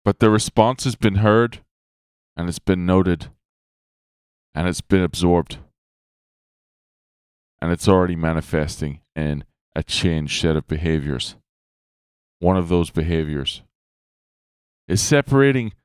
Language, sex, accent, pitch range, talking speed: English, male, American, 75-105 Hz, 115 wpm